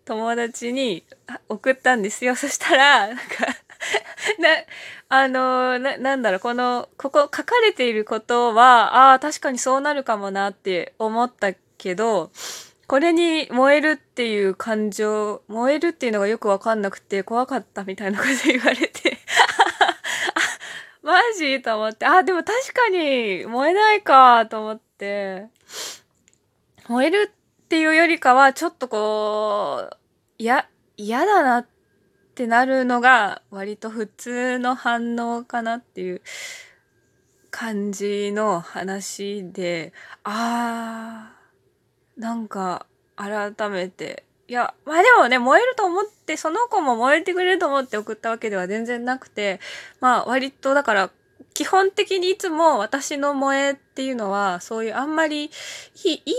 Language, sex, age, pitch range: Japanese, female, 20-39, 220-295 Hz